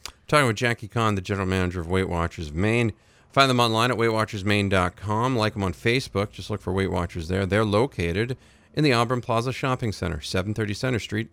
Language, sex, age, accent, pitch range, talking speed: English, male, 40-59, American, 95-120 Hz, 195 wpm